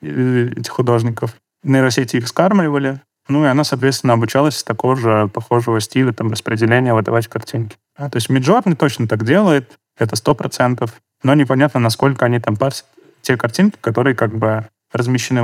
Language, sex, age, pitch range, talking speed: Russian, male, 20-39, 115-135 Hz, 150 wpm